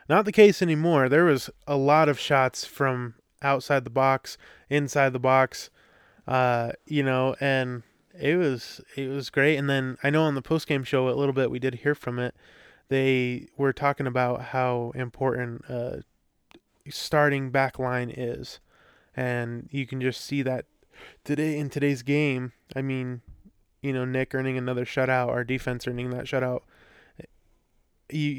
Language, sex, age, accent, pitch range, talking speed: English, male, 20-39, American, 125-140 Hz, 165 wpm